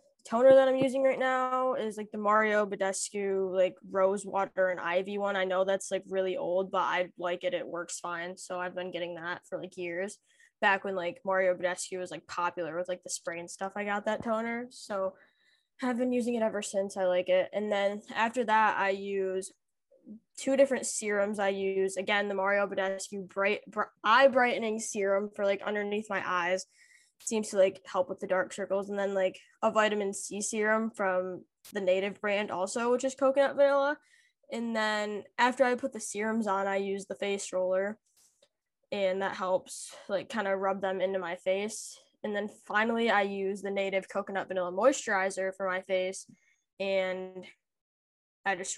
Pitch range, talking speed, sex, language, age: 185-215 Hz, 190 wpm, female, English, 10-29